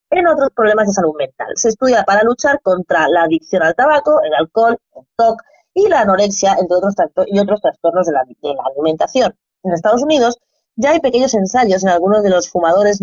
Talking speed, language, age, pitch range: 205 wpm, Spanish, 20-39, 175-230 Hz